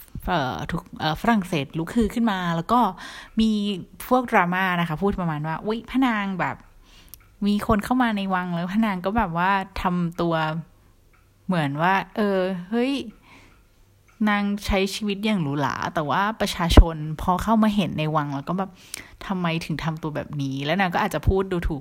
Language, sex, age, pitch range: Thai, female, 20-39, 150-205 Hz